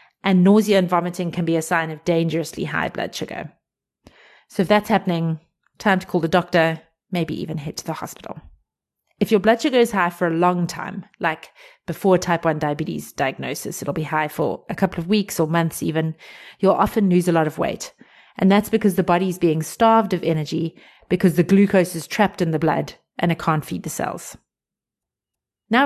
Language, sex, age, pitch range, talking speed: English, female, 30-49, 170-220 Hz, 200 wpm